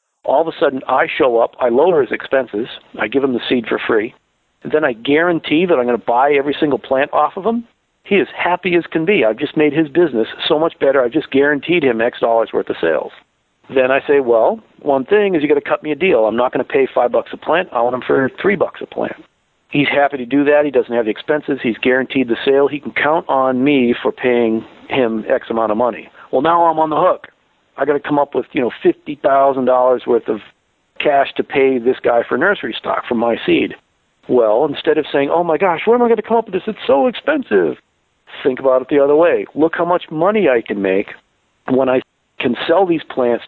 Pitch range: 130-165 Hz